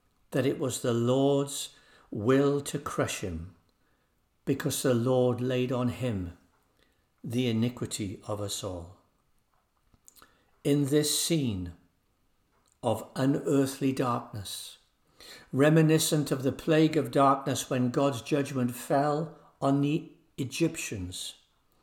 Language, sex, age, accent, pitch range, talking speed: English, male, 60-79, British, 120-155 Hz, 105 wpm